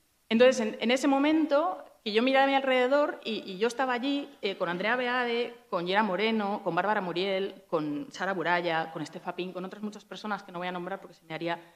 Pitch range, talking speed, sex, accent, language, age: 160-205 Hz, 225 wpm, female, Spanish, Spanish, 30-49